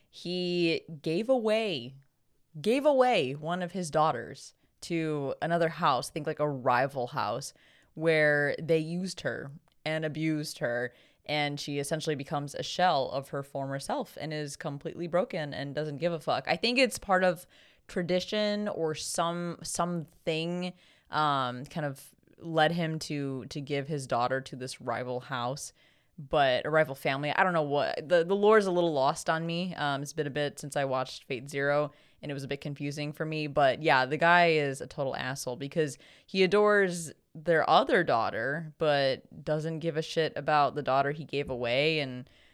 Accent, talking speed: American, 180 wpm